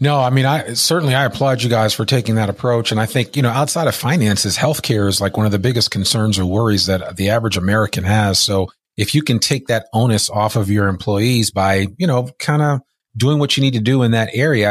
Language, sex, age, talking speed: English, male, 40-59, 250 wpm